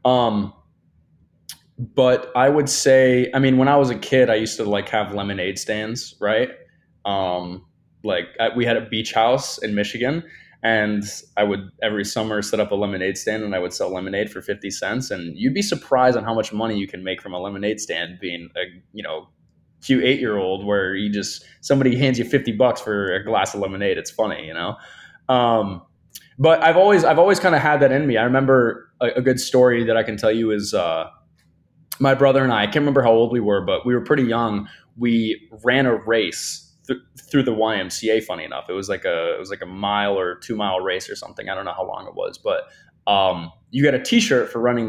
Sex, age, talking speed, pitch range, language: male, 20-39, 225 wpm, 105-135 Hz, English